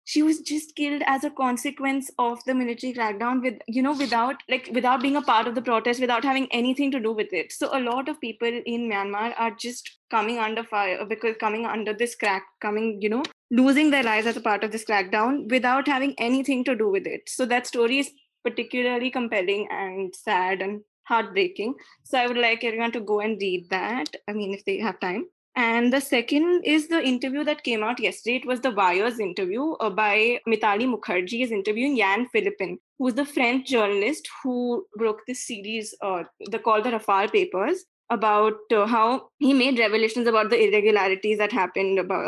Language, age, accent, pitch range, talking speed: English, 20-39, Indian, 210-260 Hz, 200 wpm